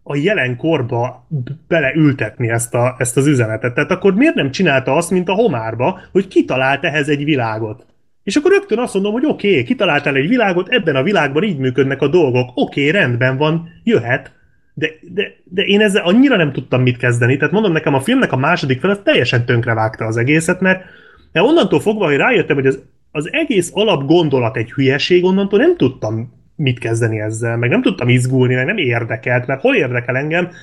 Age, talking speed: 30-49, 185 wpm